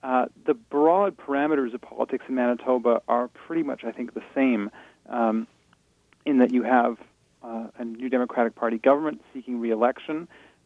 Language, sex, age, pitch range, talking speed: English, male, 40-59, 115-130 Hz, 160 wpm